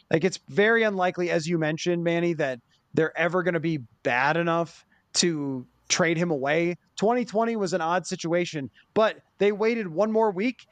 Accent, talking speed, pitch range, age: American, 175 wpm, 160-205 Hz, 20-39